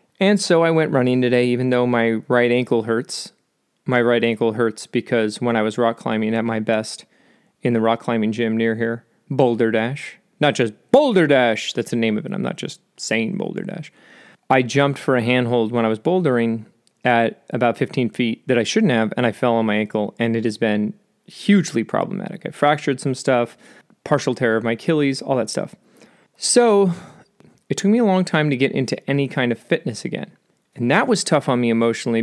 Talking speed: 210 wpm